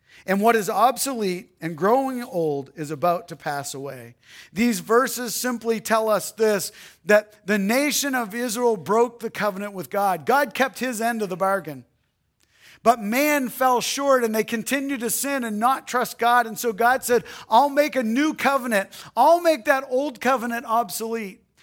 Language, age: English, 50-69